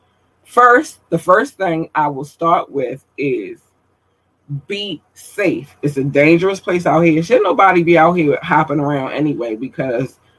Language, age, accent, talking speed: English, 20-39, American, 150 wpm